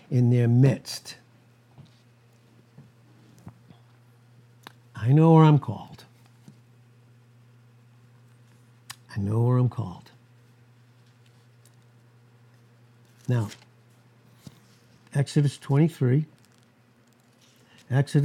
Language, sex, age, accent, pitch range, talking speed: English, male, 60-79, American, 120-135 Hz, 55 wpm